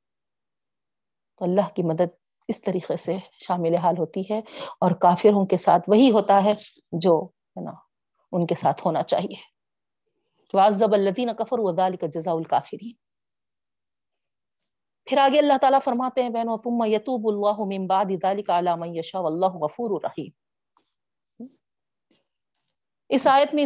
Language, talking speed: Urdu, 110 wpm